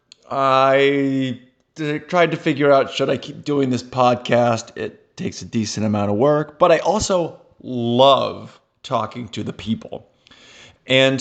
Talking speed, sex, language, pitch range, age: 145 wpm, male, English, 120-155 Hz, 30-49